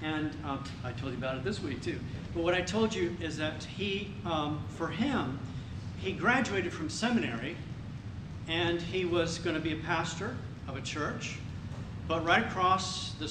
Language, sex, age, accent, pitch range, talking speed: English, male, 50-69, American, 130-165 Hz, 180 wpm